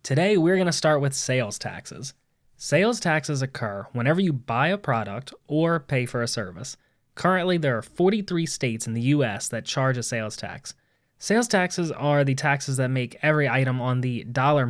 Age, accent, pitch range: 20-39, American, 125-155 Hz